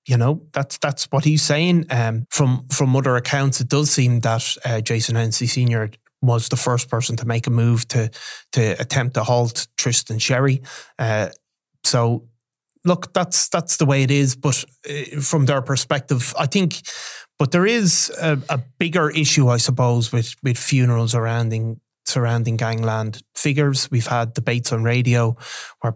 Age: 20-39